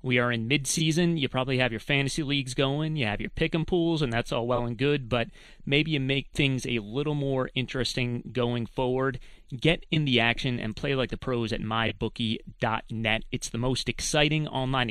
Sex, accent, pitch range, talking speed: male, American, 115-140 Hz, 195 wpm